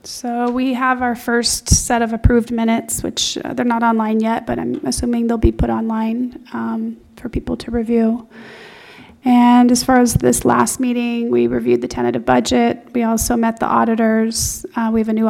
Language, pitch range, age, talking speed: English, 215-235 Hz, 30-49, 190 wpm